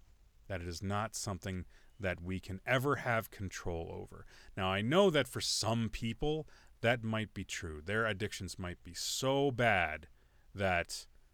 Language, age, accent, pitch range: English, 30-49, American, 90-125 Hz